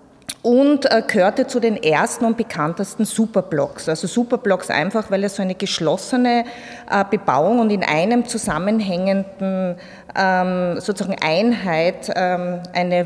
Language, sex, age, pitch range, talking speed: German, female, 30-49, 195-245 Hz, 120 wpm